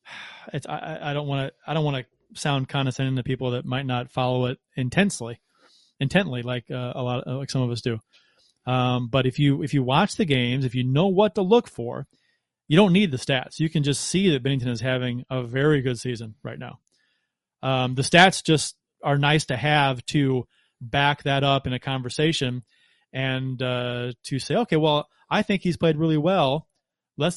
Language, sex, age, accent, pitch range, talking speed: English, male, 30-49, American, 125-150 Hz, 205 wpm